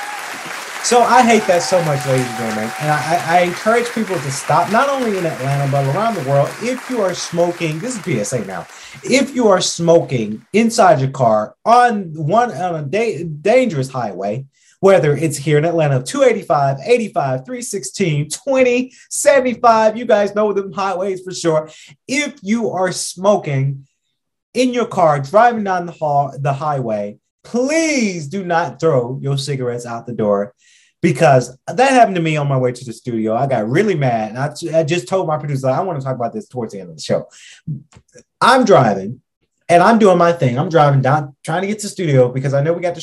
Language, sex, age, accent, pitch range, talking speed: English, male, 30-49, American, 135-210 Hz, 195 wpm